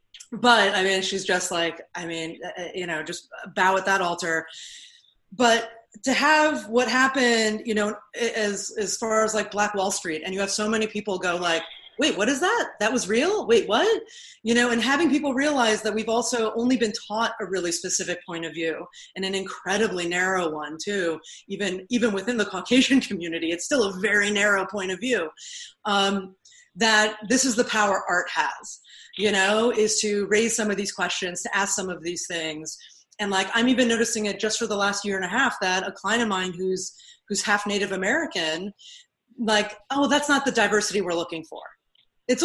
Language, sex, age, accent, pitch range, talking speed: English, female, 30-49, American, 190-250 Hz, 200 wpm